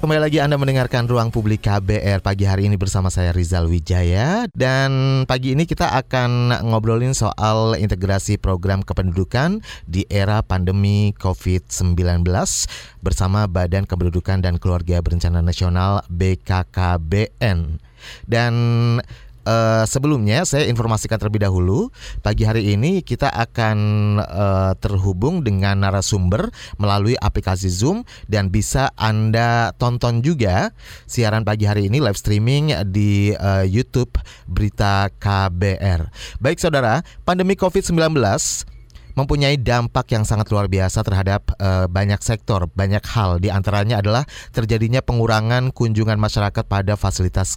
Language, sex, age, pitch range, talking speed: Indonesian, male, 30-49, 95-120 Hz, 120 wpm